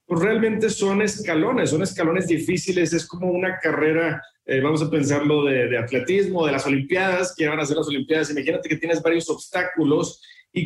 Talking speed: 185 wpm